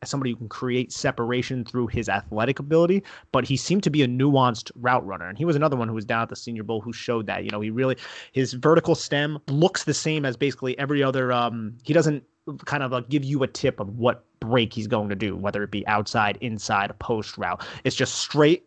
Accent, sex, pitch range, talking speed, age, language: American, male, 115-135 Hz, 235 wpm, 30-49, English